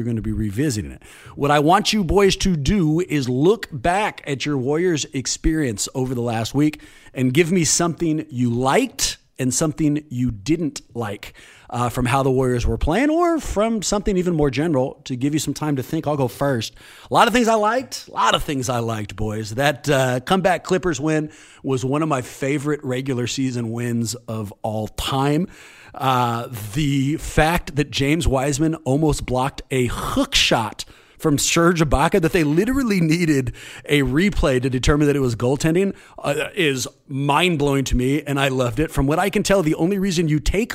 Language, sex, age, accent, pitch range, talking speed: English, male, 40-59, American, 125-160 Hz, 195 wpm